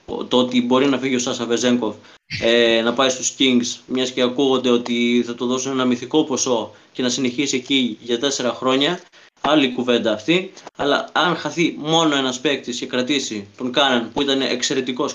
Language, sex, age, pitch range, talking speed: Greek, male, 20-39, 125-140 Hz, 180 wpm